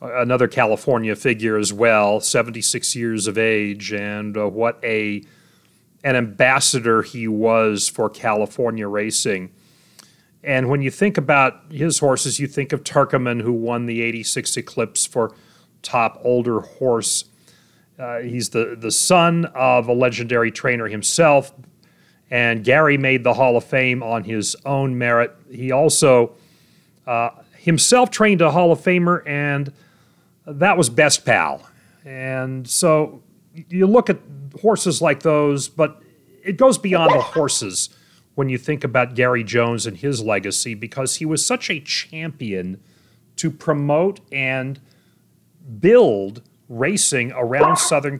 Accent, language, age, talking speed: American, English, 40-59, 140 wpm